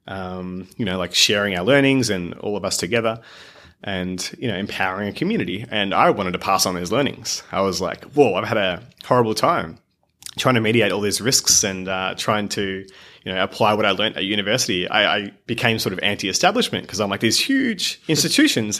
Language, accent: English, Australian